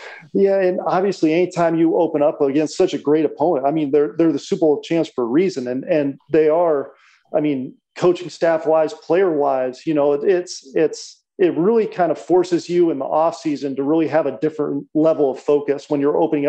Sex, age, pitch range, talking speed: male, 40-59, 150-180 Hz, 215 wpm